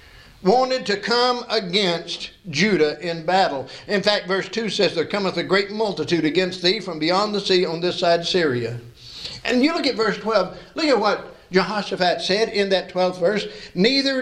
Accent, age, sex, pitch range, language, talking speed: American, 60-79, male, 170-235 Hz, English, 180 wpm